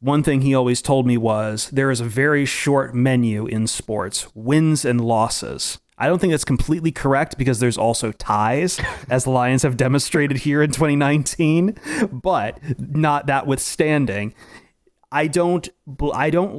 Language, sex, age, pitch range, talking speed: English, male, 30-49, 115-140 Hz, 160 wpm